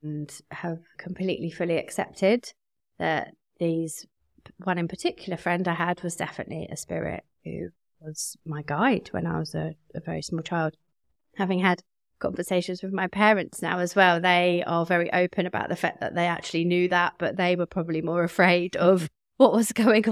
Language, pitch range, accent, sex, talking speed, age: English, 160-185 Hz, British, female, 180 wpm, 30-49